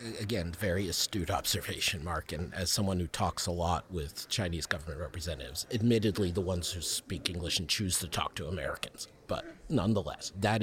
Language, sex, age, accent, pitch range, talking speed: English, male, 50-69, American, 90-115 Hz, 175 wpm